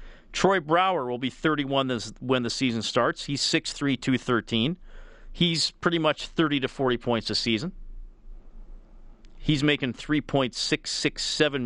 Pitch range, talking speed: 115-150 Hz, 125 wpm